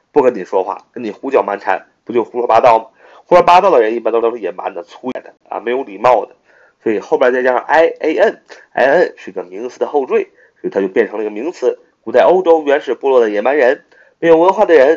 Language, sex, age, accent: Chinese, male, 30-49, native